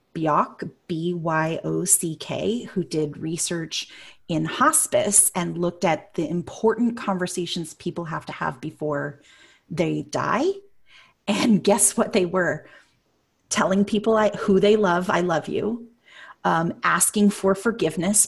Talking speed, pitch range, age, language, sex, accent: 120 wpm, 170-205 Hz, 30-49, English, female, American